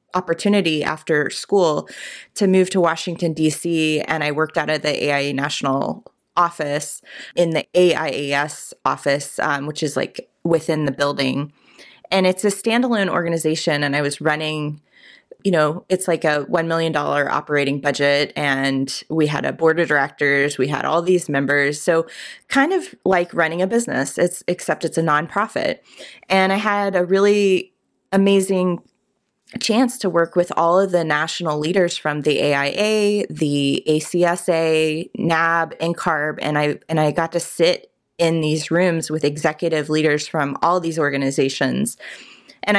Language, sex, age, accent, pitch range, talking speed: English, female, 20-39, American, 150-180 Hz, 155 wpm